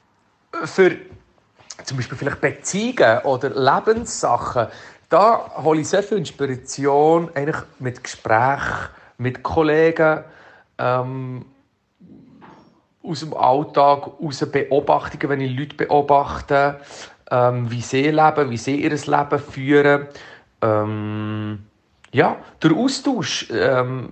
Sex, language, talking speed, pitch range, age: male, German, 105 wpm, 130-160 Hz, 40-59